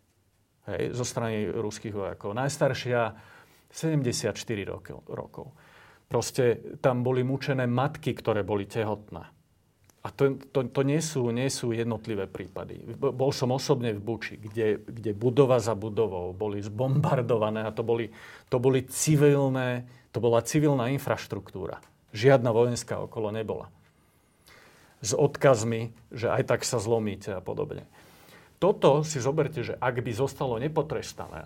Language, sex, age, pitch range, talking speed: Slovak, male, 40-59, 105-135 Hz, 135 wpm